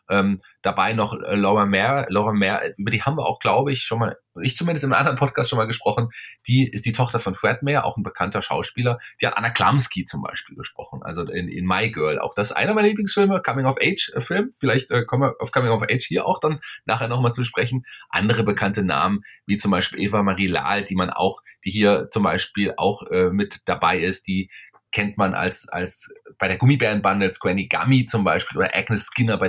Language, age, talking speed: German, 30-49, 220 wpm